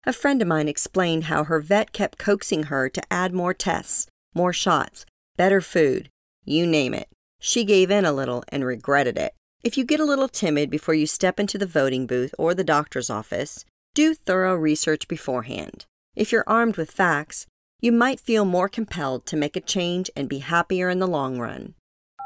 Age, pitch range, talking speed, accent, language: 40-59, 150-205 Hz, 195 wpm, American, English